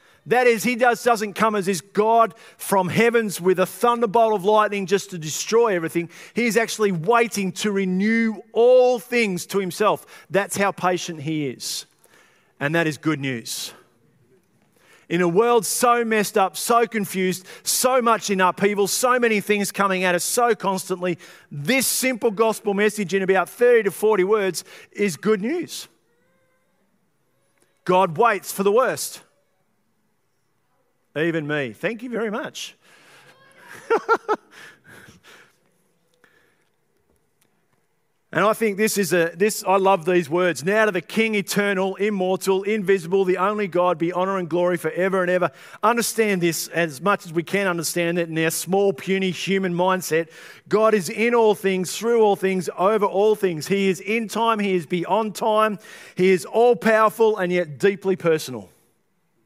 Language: English